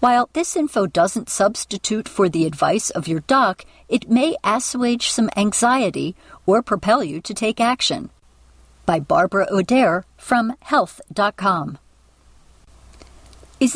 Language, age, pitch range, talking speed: English, 50-69, 180-245 Hz, 120 wpm